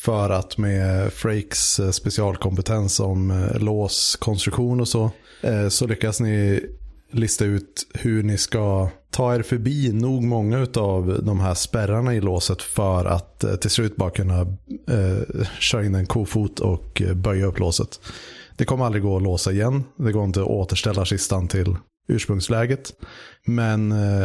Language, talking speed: Swedish, 145 wpm